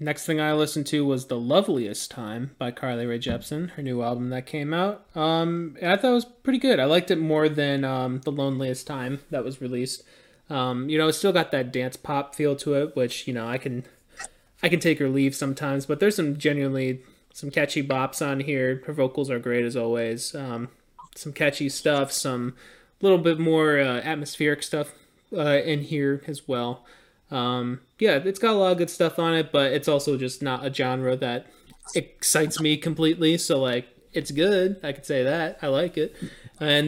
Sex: male